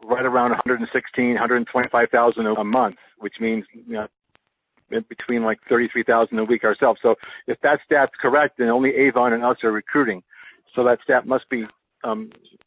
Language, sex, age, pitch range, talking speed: English, male, 50-69, 115-135 Hz, 160 wpm